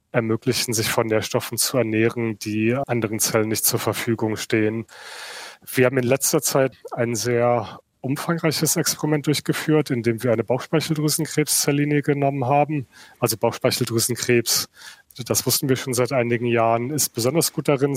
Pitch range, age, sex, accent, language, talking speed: 115-135 Hz, 30-49, male, German, German, 140 wpm